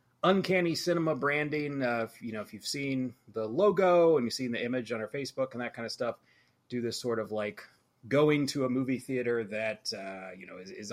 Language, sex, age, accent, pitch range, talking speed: English, male, 30-49, American, 125-160 Hz, 220 wpm